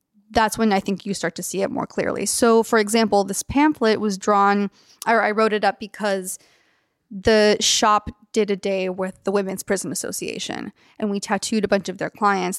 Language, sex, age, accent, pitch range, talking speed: English, female, 20-39, American, 195-225 Hz, 200 wpm